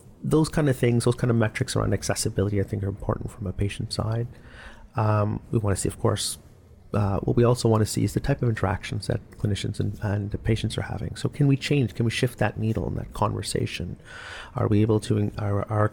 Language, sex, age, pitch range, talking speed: English, male, 30-49, 100-120 Hz, 235 wpm